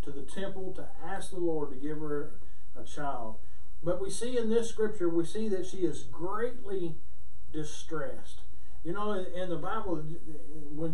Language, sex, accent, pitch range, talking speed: English, male, American, 155-195 Hz, 170 wpm